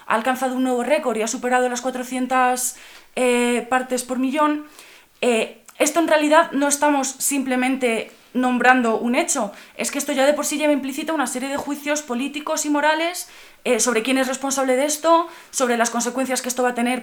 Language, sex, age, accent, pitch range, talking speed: Spanish, female, 20-39, Spanish, 235-280 Hz, 195 wpm